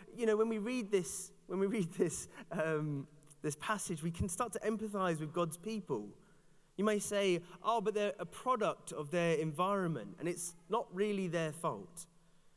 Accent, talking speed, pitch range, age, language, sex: British, 180 wpm, 160-195 Hz, 30-49, English, male